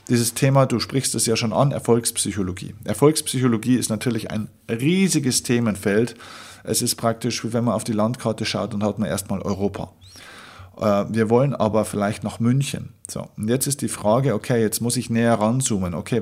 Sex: male